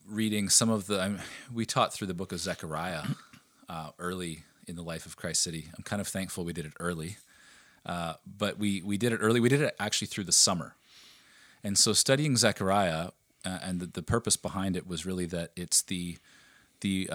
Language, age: English, 30-49